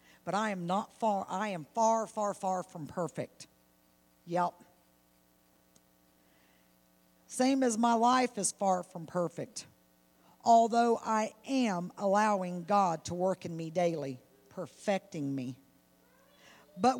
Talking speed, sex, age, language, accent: 120 wpm, female, 50-69, English, American